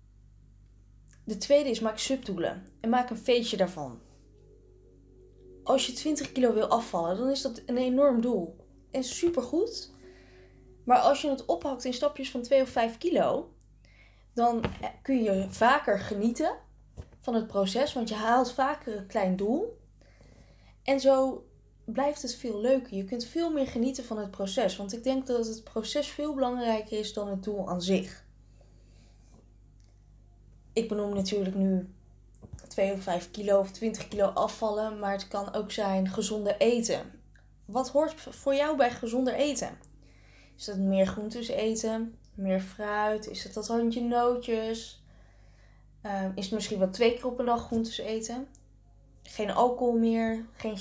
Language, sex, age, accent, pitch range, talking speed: Dutch, female, 10-29, Dutch, 190-250 Hz, 155 wpm